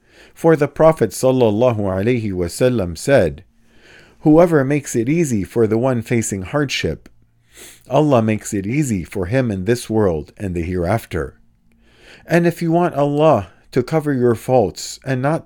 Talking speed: 150 wpm